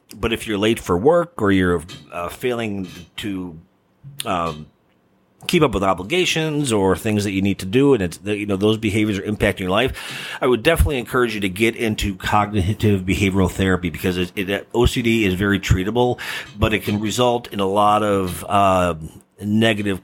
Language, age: English, 40-59